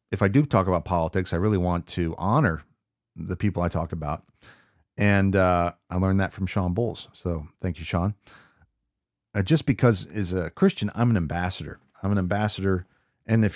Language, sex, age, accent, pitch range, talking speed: English, male, 40-59, American, 90-115 Hz, 185 wpm